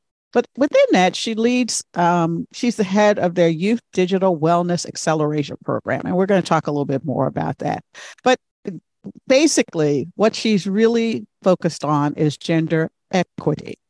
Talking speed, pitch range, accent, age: 160 wpm, 160-205 Hz, American, 50-69